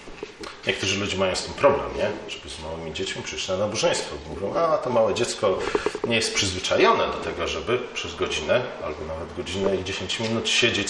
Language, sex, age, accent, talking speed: Polish, male, 40-59, native, 185 wpm